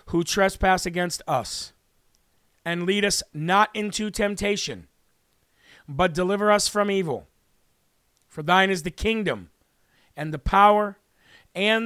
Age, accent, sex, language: 40-59, American, male, English